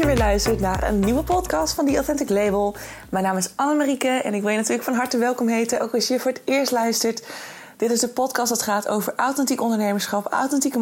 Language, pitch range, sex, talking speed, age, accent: Dutch, 190-250 Hz, female, 220 wpm, 20-39, Dutch